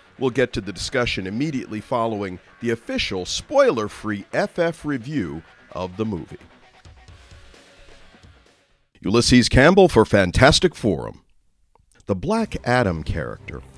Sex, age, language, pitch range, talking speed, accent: male, 50-69, English, 85-110 Hz, 105 wpm, American